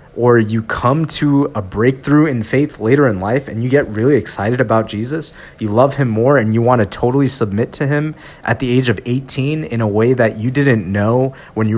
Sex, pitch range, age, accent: male, 110-145 Hz, 30-49, American